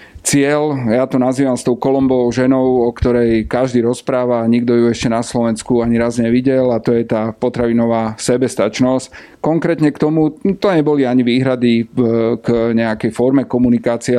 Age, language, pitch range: 40-59, Slovak, 115-130 Hz